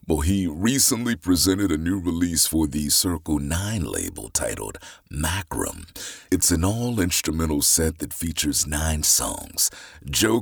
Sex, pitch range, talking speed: male, 80-90 Hz, 130 wpm